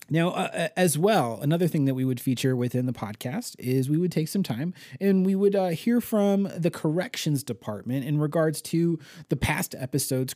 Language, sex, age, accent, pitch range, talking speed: English, male, 30-49, American, 125-185 Hz, 195 wpm